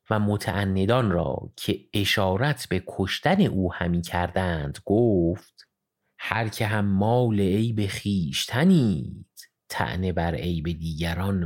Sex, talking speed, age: male, 120 wpm, 30-49